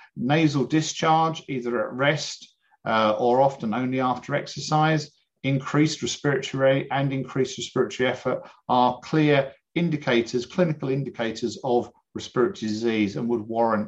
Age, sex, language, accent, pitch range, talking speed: 50-69, male, English, British, 120-150 Hz, 125 wpm